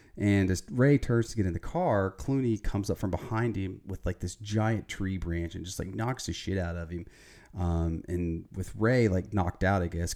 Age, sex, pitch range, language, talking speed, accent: 30-49, male, 90-115 Hz, English, 230 wpm, American